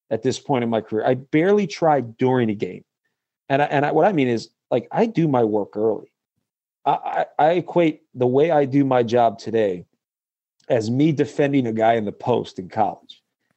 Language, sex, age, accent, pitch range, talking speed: English, male, 40-59, American, 125-160 Hz, 210 wpm